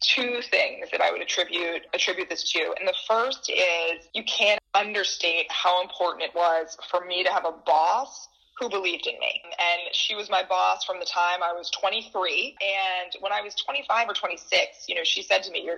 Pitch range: 175-240 Hz